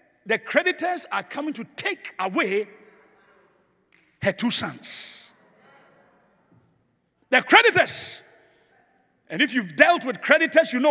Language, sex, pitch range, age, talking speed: English, male, 255-380 Hz, 60-79, 110 wpm